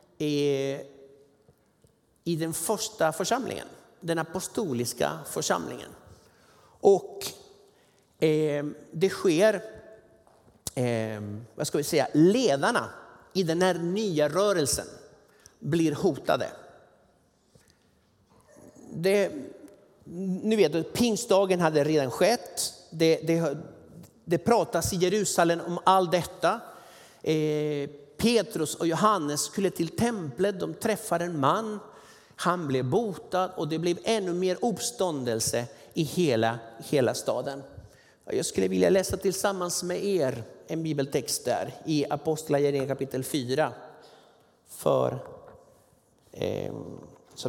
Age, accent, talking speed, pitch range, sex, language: 50-69, native, 95 wpm, 145-200 Hz, male, Swedish